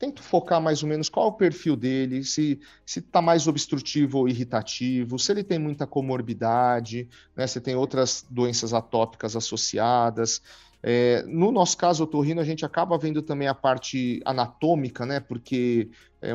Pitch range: 125-175 Hz